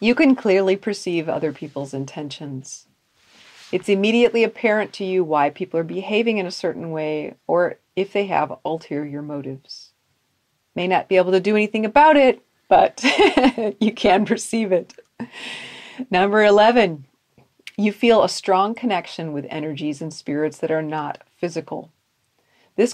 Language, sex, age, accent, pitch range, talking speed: English, female, 40-59, American, 155-230 Hz, 145 wpm